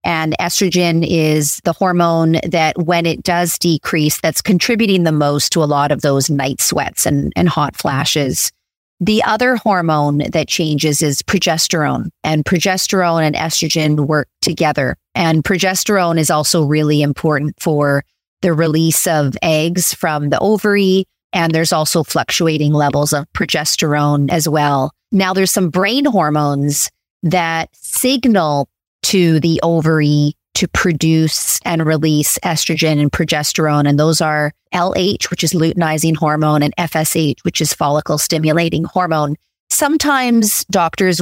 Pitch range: 150-180 Hz